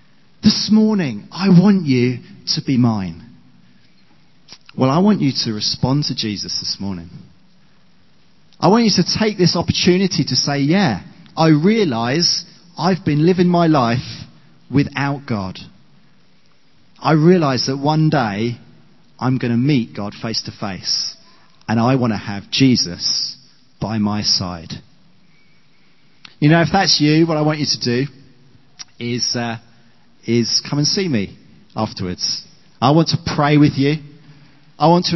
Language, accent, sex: English, British, male